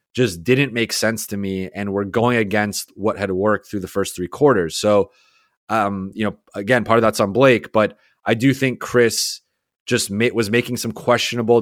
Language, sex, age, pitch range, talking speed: English, male, 30-49, 100-125 Hz, 200 wpm